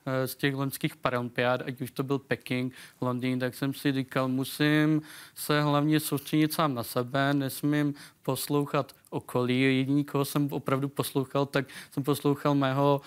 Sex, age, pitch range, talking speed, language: male, 20-39, 130-145 Hz, 145 wpm, Czech